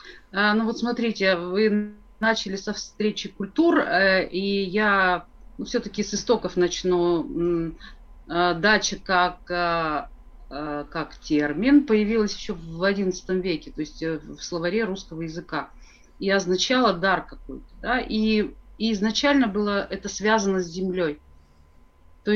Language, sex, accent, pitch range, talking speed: Russian, female, native, 175-225 Hz, 120 wpm